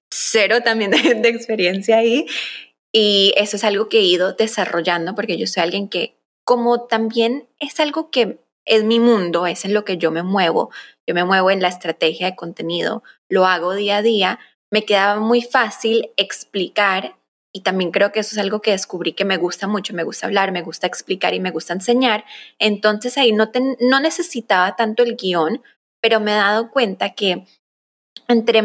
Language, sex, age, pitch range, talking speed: Spanish, female, 20-39, 185-230 Hz, 190 wpm